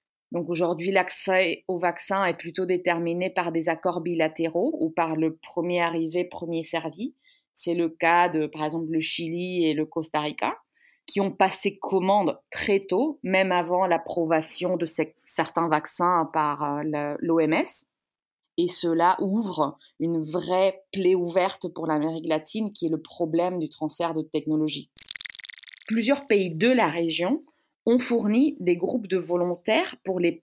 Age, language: 30-49, French